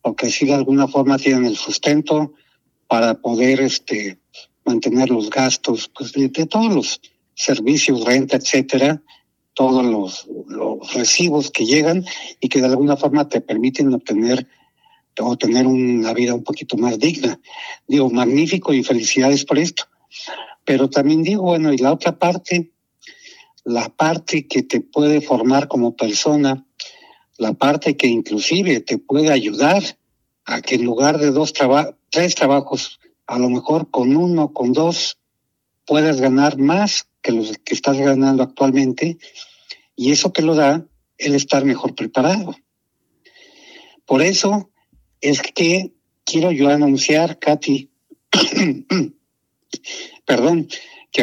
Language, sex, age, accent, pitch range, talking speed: Spanish, male, 60-79, Mexican, 130-160 Hz, 140 wpm